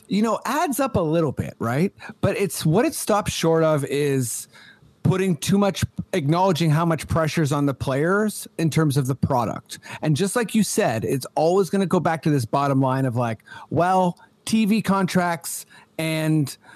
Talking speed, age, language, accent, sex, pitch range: 190 wpm, 40-59, English, American, male, 140-185 Hz